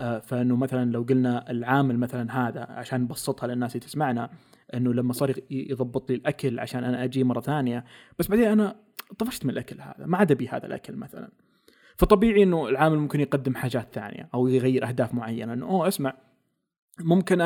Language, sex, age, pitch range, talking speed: Arabic, male, 20-39, 125-155 Hz, 175 wpm